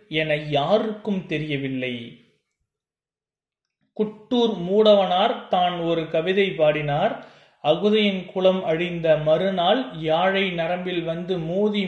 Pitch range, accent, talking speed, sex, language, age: 150-185 Hz, native, 85 wpm, male, Tamil, 30-49